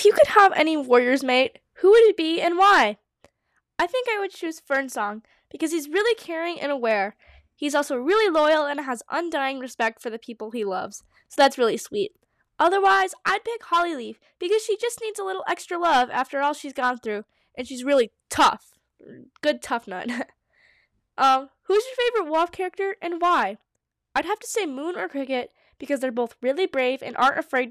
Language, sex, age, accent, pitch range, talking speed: English, female, 10-29, American, 260-370 Hz, 195 wpm